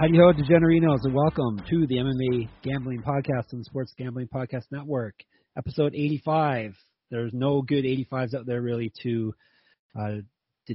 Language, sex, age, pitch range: English, male, 30-49, 110-140 Hz